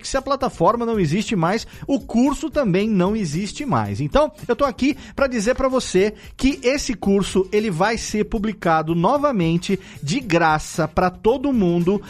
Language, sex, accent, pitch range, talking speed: Portuguese, male, Brazilian, 170-230 Hz, 170 wpm